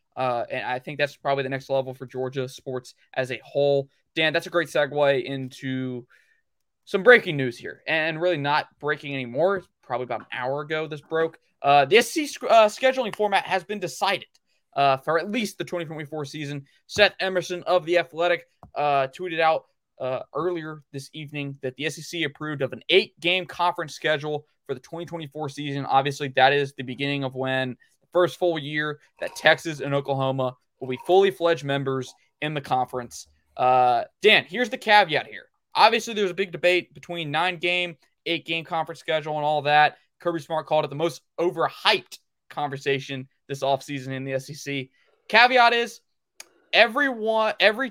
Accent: American